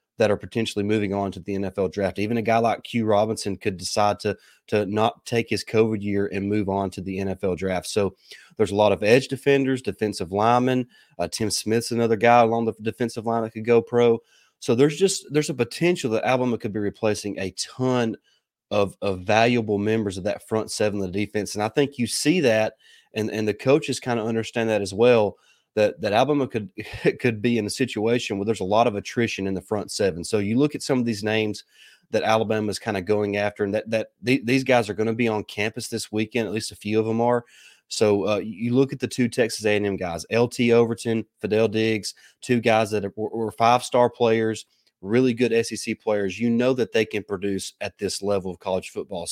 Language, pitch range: English, 105-120 Hz